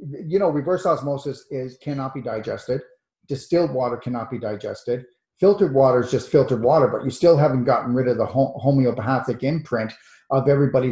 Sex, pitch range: male, 130-165 Hz